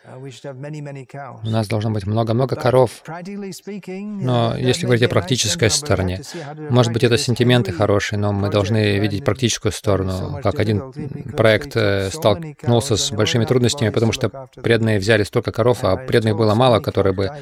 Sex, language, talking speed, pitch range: male, Russian, 145 wpm, 105-135 Hz